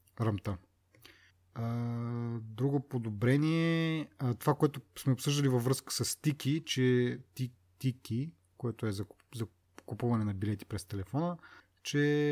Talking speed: 105 wpm